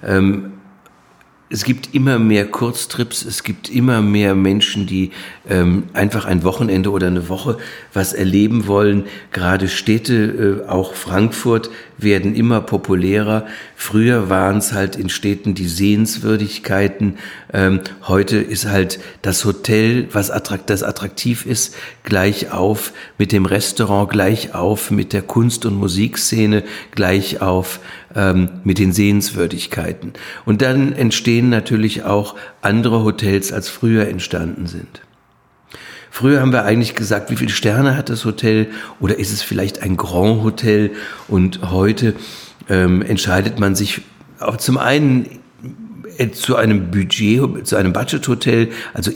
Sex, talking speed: male, 130 wpm